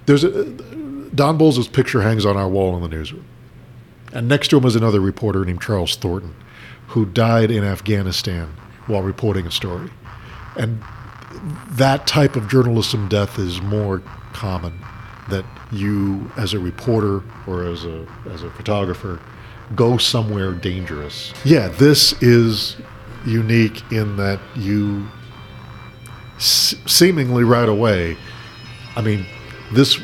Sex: male